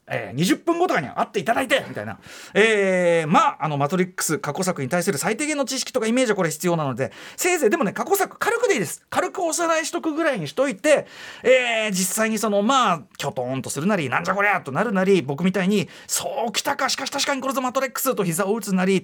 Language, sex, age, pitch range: Japanese, male, 40-59, 170-270 Hz